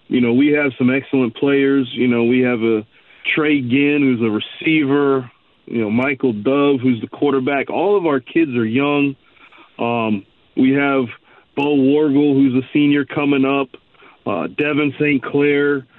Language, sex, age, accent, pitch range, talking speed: English, male, 40-59, American, 120-140 Hz, 160 wpm